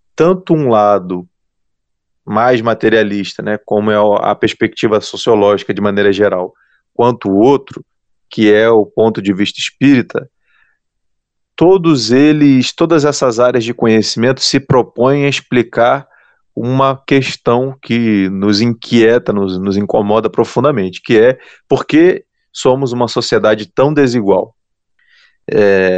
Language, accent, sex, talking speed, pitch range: Portuguese, Brazilian, male, 125 wpm, 105-145 Hz